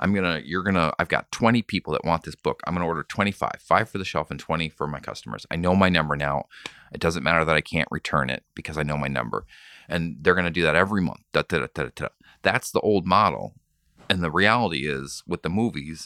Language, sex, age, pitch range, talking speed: English, male, 30-49, 75-95 Hz, 245 wpm